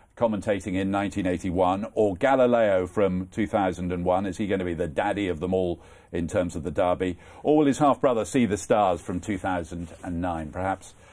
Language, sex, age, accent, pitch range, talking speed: English, male, 50-69, British, 90-110 Hz, 175 wpm